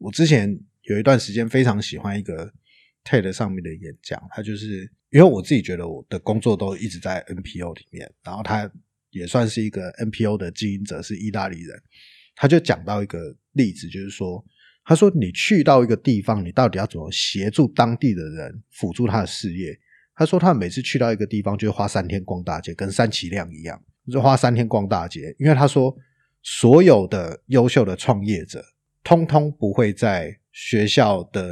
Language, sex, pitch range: Chinese, male, 95-130 Hz